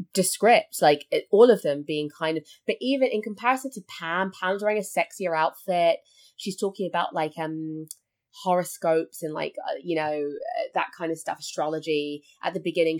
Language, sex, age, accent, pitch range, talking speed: English, female, 20-39, British, 165-225 Hz, 185 wpm